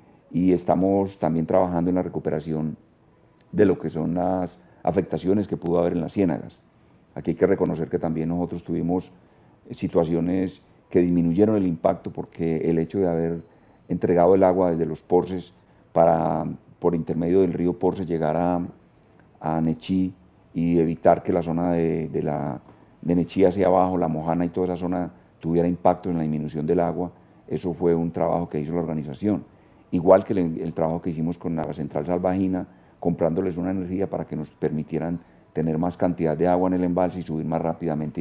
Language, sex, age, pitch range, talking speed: Spanish, male, 40-59, 80-90 Hz, 180 wpm